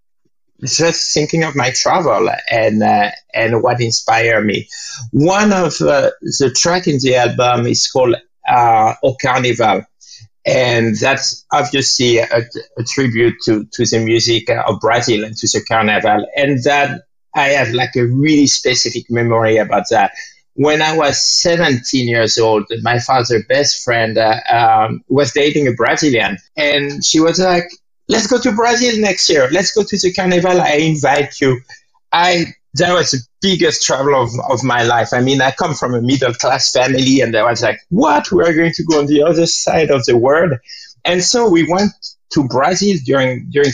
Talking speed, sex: 175 wpm, male